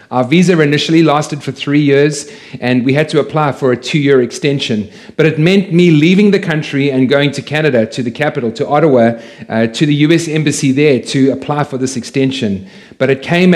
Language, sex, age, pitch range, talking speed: English, male, 40-59, 125-150 Hz, 205 wpm